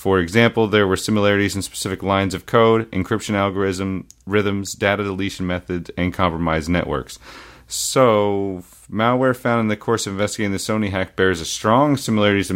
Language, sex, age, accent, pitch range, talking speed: English, male, 30-49, American, 90-110 Hz, 165 wpm